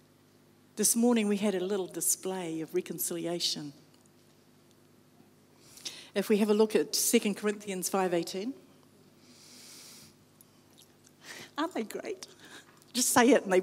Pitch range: 190-235 Hz